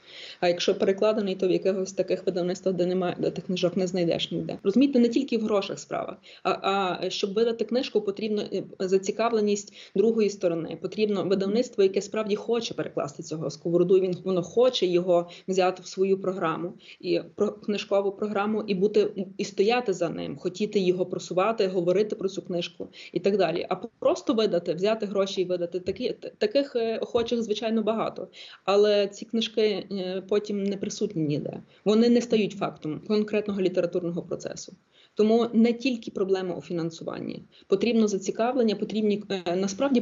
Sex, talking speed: female, 155 wpm